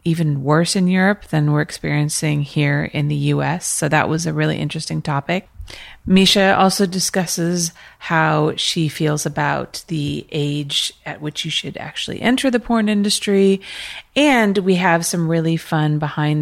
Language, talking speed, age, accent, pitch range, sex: English, 155 wpm, 30-49, American, 145-175 Hz, female